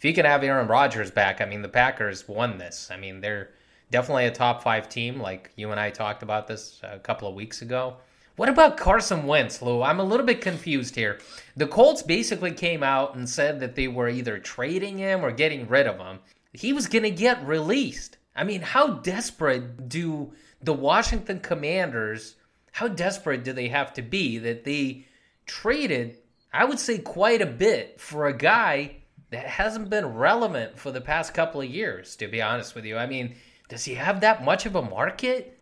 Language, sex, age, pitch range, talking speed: English, male, 30-49, 120-170 Hz, 200 wpm